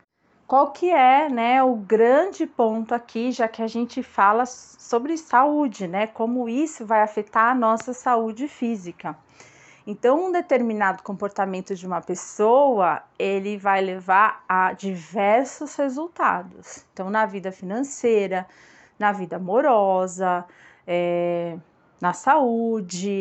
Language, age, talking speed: Portuguese, 30-49, 120 wpm